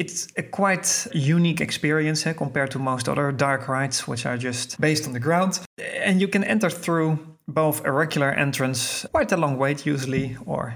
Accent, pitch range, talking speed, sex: Dutch, 125-155 Hz, 190 wpm, male